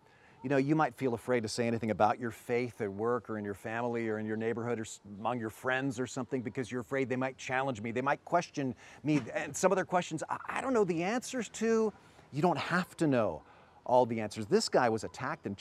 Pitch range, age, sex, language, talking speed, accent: 110-155 Hz, 40-59, male, English, 240 wpm, American